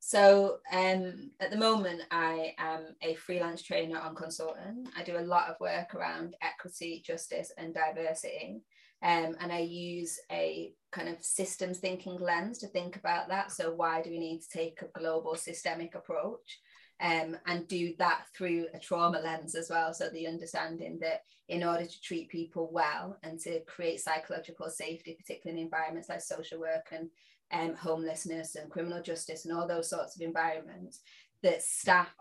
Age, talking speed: 20-39, 175 wpm